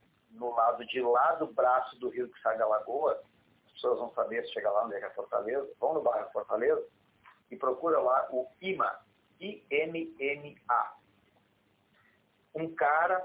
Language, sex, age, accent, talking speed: Portuguese, male, 50-69, Brazilian, 170 wpm